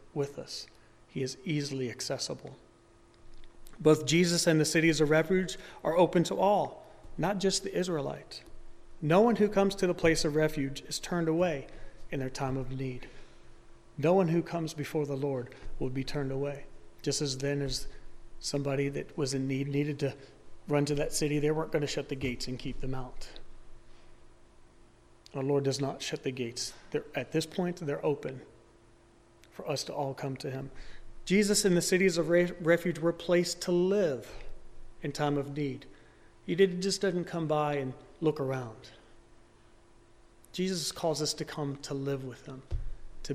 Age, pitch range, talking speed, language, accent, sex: 40-59, 135-170 Hz, 175 wpm, English, American, male